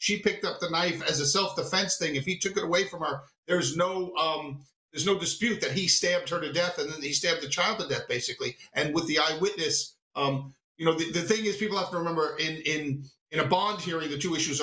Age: 50-69